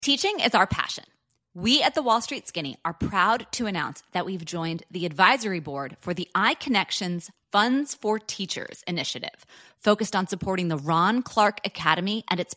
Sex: female